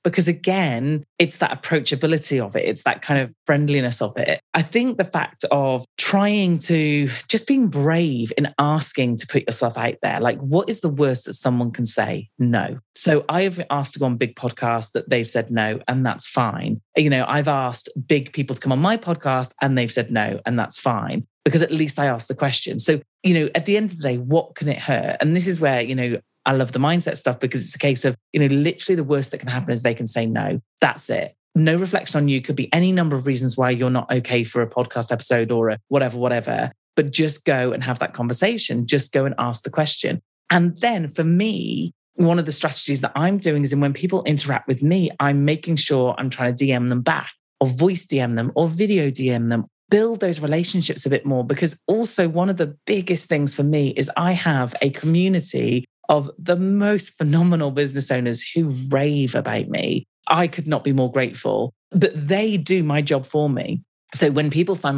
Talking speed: 225 wpm